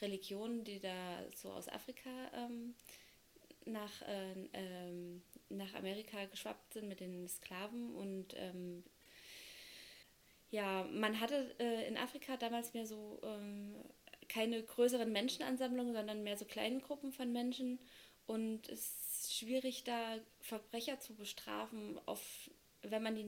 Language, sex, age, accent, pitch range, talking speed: German, female, 20-39, German, 195-235 Hz, 130 wpm